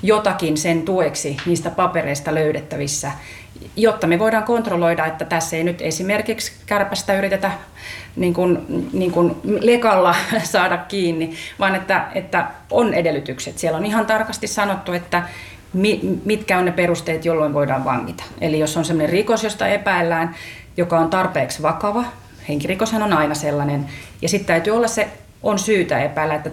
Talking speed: 145 wpm